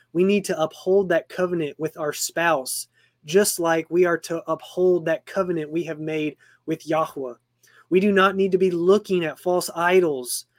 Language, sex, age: English, male, 20-39